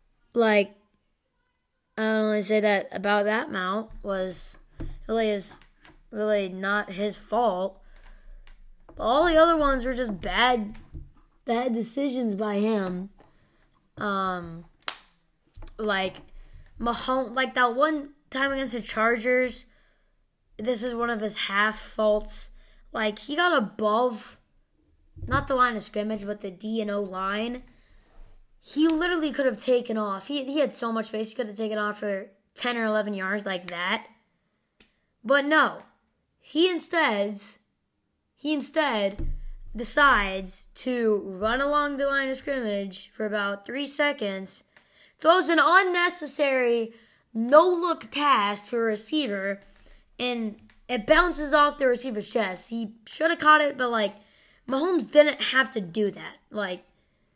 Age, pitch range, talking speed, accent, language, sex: 10-29, 205-270 Hz, 140 wpm, American, English, female